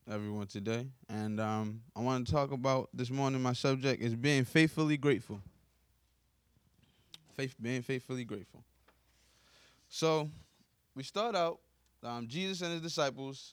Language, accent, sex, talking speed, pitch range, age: English, American, male, 135 wpm, 115-150 Hz, 20-39